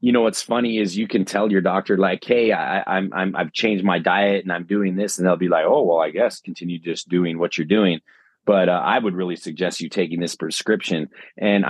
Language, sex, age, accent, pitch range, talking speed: English, male, 30-49, American, 90-115 Hz, 245 wpm